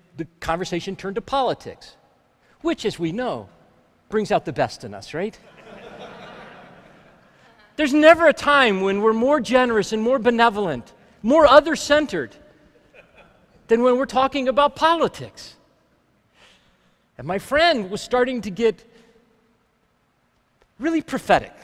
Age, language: 40-59, English